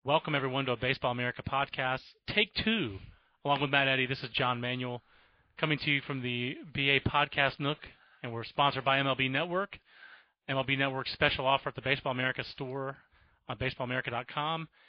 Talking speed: 170 wpm